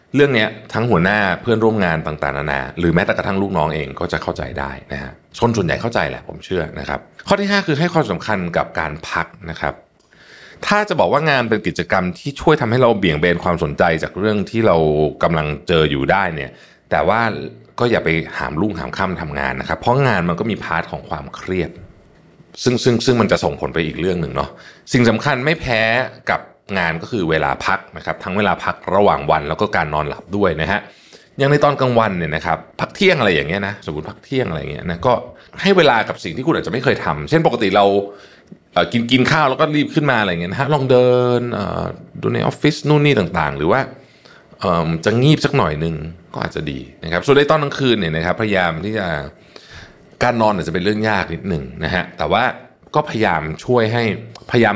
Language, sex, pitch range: Thai, male, 80-130 Hz